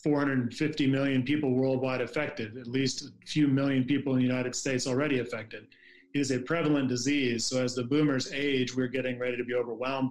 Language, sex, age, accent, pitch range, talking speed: English, male, 40-59, American, 130-145 Hz, 195 wpm